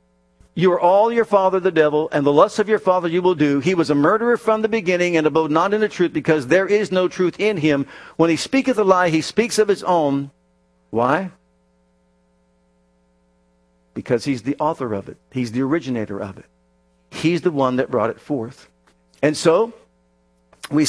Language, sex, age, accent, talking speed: English, male, 50-69, American, 195 wpm